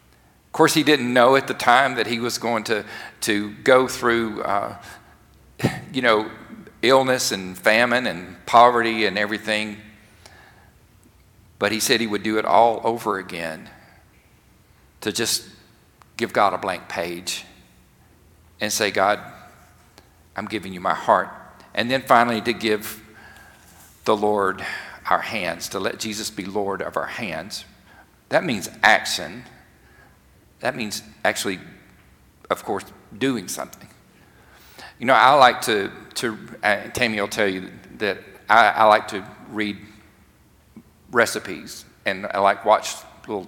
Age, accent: 50-69, American